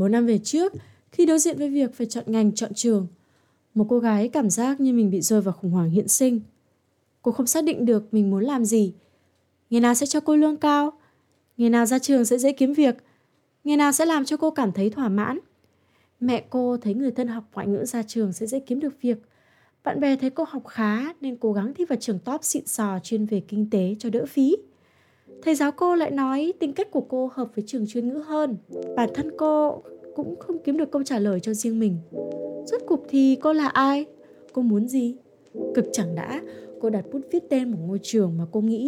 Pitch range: 205-280 Hz